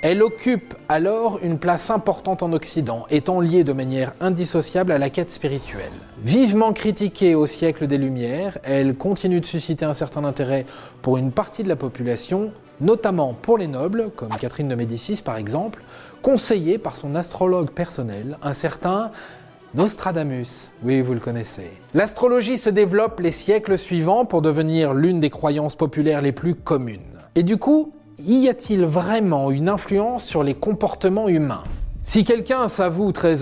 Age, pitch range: 20-39, 140-195 Hz